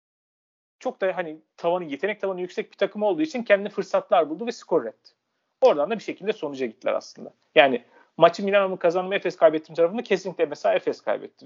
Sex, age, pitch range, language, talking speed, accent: male, 40-59, 150-200 Hz, Turkish, 185 wpm, native